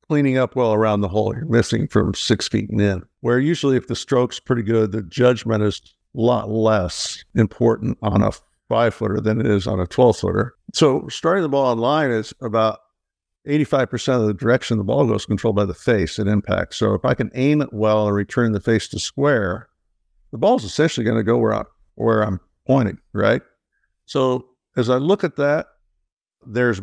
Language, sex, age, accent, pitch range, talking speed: English, male, 60-79, American, 105-130 Hz, 195 wpm